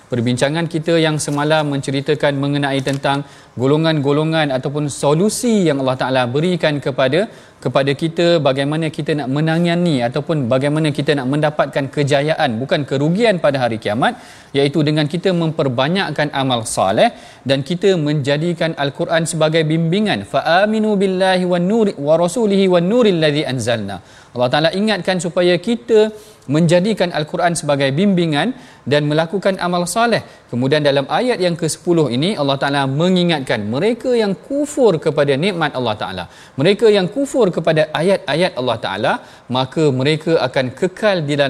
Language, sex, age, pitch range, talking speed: Malayalam, male, 40-59, 140-180 Hz, 140 wpm